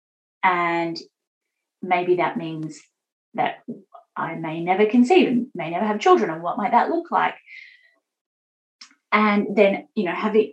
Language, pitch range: English, 180-245 Hz